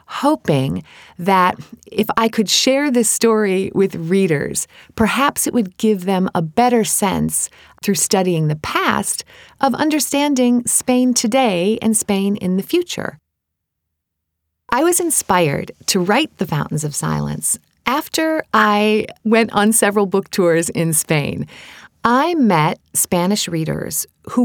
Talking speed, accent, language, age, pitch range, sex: 135 wpm, American, English, 40-59, 185-255 Hz, female